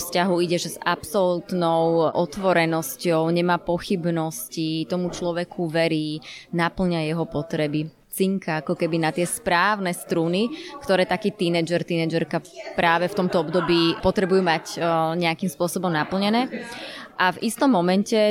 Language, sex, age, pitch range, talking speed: Slovak, female, 20-39, 165-190 Hz, 120 wpm